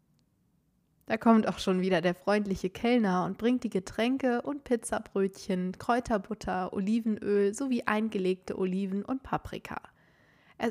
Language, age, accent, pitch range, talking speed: German, 20-39, German, 190-230 Hz, 125 wpm